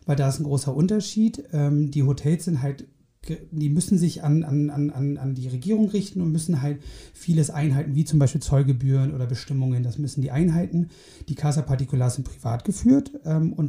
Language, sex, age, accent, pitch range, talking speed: German, male, 30-49, German, 140-170 Hz, 185 wpm